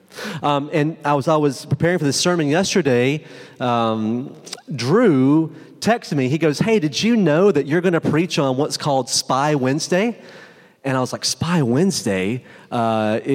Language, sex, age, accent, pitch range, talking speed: English, male, 30-49, American, 140-180 Hz, 170 wpm